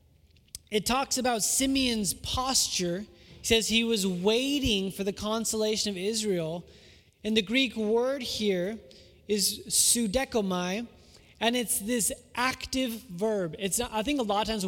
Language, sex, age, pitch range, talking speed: English, male, 20-39, 185-250 Hz, 140 wpm